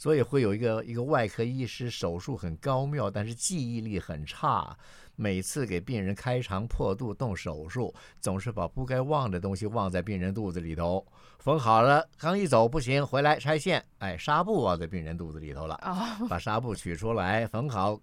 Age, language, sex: 50-69, Chinese, male